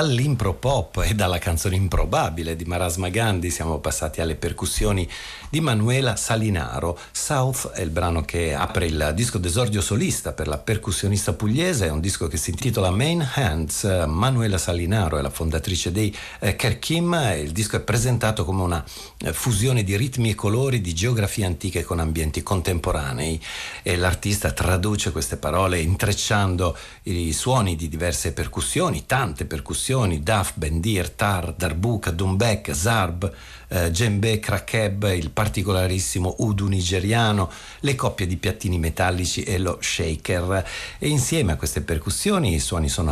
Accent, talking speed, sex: native, 145 wpm, male